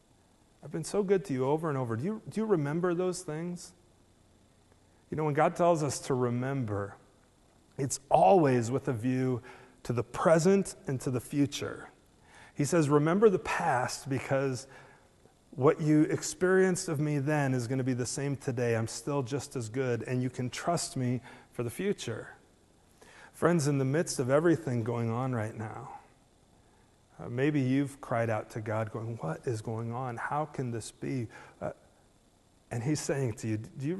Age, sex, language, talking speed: 40-59, male, English, 175 wpm